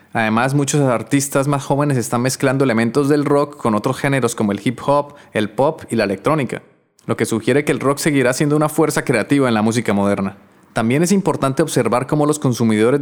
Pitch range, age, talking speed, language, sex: 115-140 Hz, 20-39, 205 wpm, Spanish, male